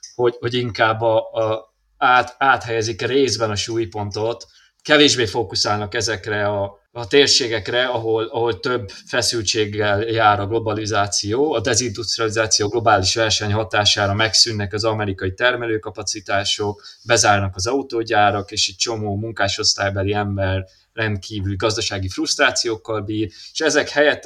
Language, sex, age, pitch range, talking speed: Hungarian, male, 20-39, 100-120 Hz, 120 wpm